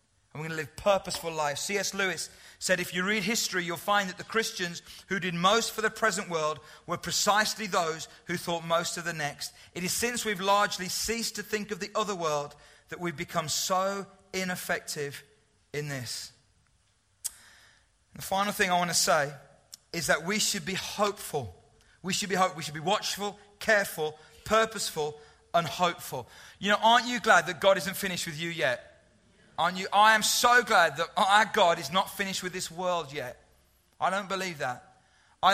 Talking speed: 185 wpm